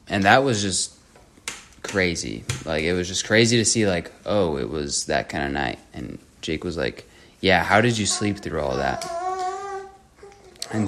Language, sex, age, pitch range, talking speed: English, male, 20-39, 90-110 Hz, 180 wpm